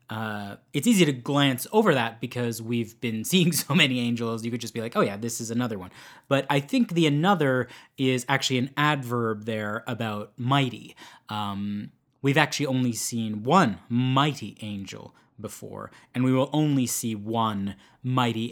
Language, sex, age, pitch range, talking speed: English, male, 20-39, 110-130 Hz, 170 wpm